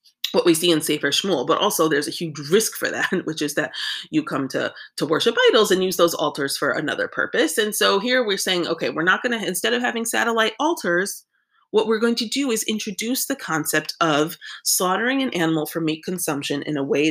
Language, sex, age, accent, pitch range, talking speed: English, female, 30-49, American, 165-255 Hz, 225 wpm